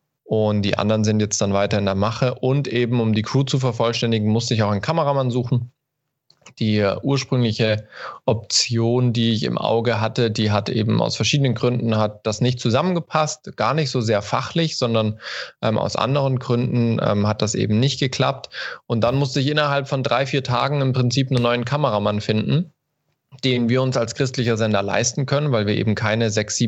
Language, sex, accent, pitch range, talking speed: German, male, German, 110-130 Hz, 190 wpm